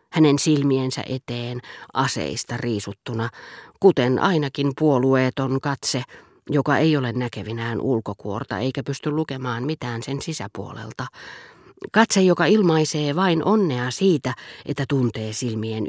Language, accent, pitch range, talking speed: Finnish, native, 125-160 Hz, 110 wpm